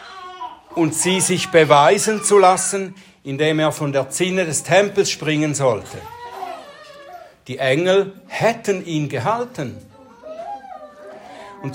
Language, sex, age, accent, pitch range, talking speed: German, male, 60-79, German, 155-210 Hz, 105 wpm